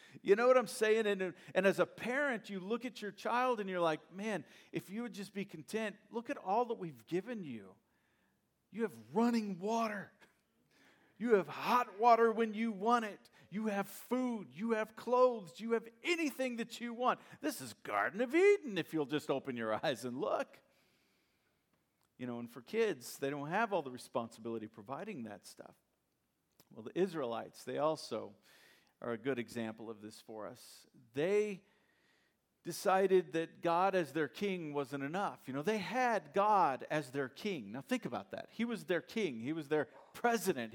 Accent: American